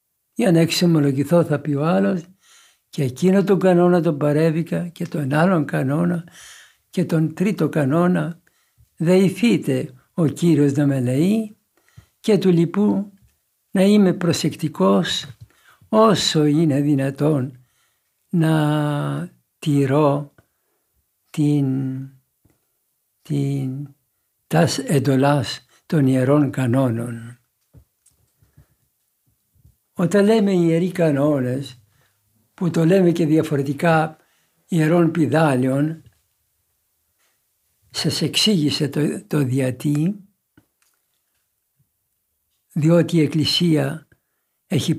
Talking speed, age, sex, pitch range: 80 wpm, 60-79, male, 135-175 Hz